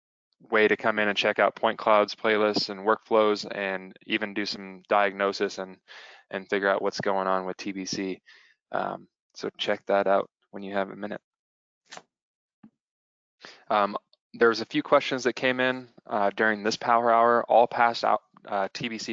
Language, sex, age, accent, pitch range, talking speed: English, male, 20-39, American, 95-110 Hz, 170 wpm